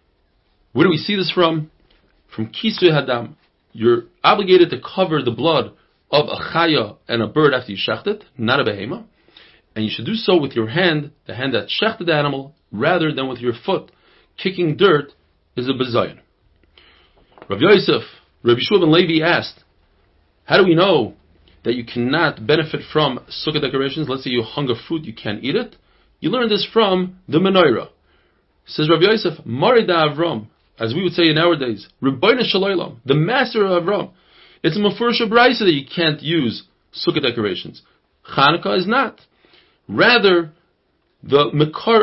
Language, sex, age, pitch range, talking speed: English, male, 30-49, 130-180 Hz, 170 wpm